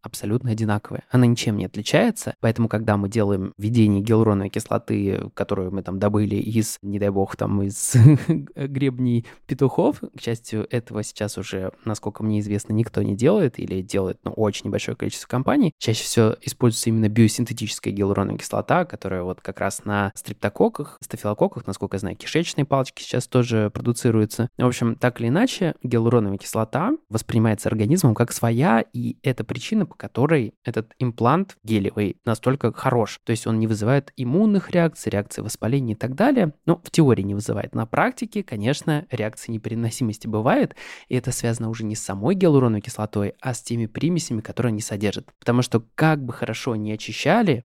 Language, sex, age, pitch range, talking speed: Russian, male, 20-39, 105-135 Hz, 170 wpm